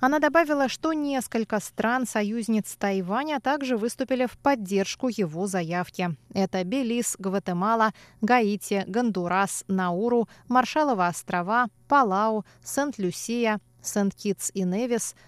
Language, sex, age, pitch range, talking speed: Russian, female, 20-39, 180-235 Hz, 100 wpm